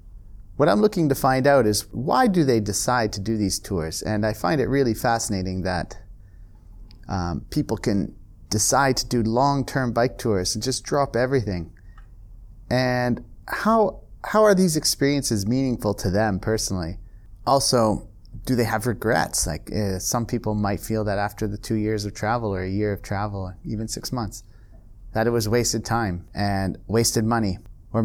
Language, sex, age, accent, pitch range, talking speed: English, male, 30-49, American, 100-120 Hz, 170 wpm